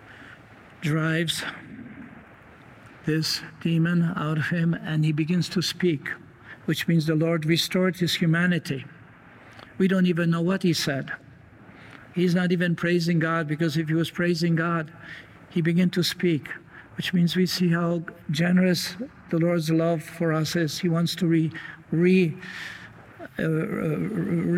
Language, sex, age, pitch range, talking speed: English, male, 60-79, 155-170 Hz, 140 wpm